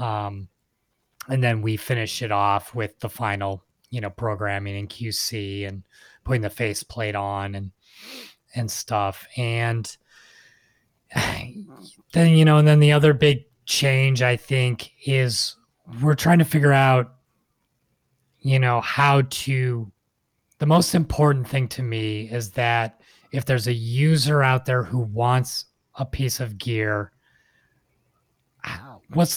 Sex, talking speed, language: male, 135 wpm, English